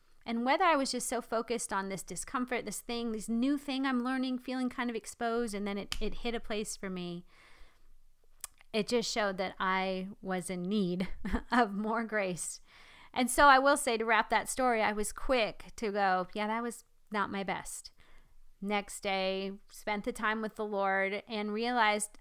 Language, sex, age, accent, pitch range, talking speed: English, female, 30-49, American, 210-255 Hz, 190 wpm